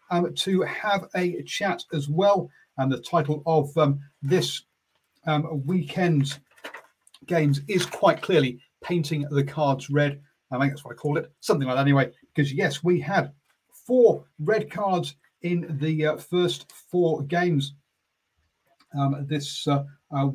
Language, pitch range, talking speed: English, 140-170 Hz, 150 wpm